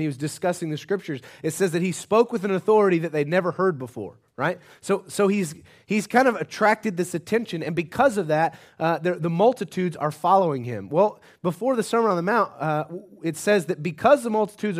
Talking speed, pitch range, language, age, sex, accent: 215 wpm, 155-200 Hz, English, 30-49, male, American